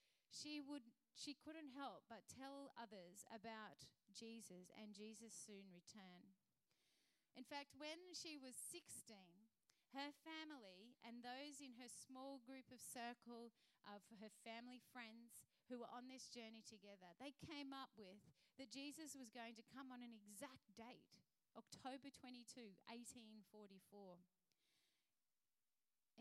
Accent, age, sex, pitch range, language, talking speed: Australian, 30-49, female, 220-275 Hz, English, 130 wpm